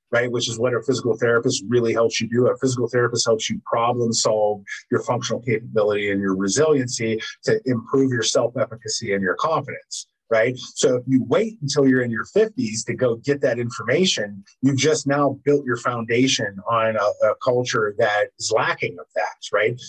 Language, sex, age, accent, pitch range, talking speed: English, male, 30-49, American, 110-135 Hz, 190 wpm